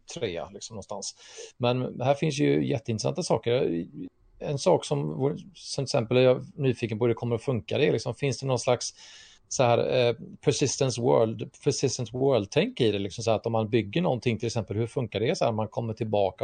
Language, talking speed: English, 210 wpm